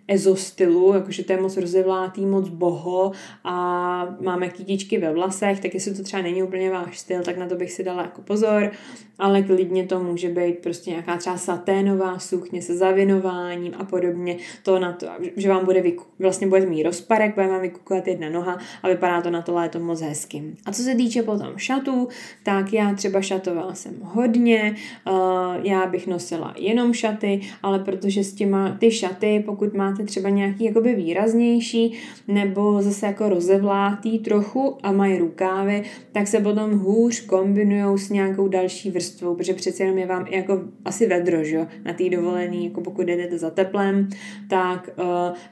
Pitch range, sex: 185-205 Hz, female